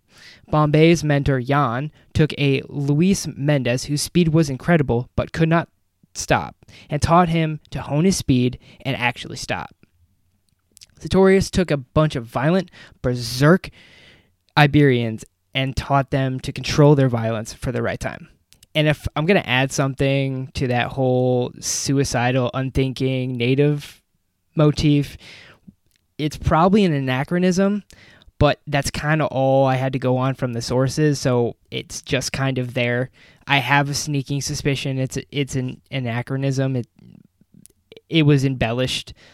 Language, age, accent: English, 20-39, American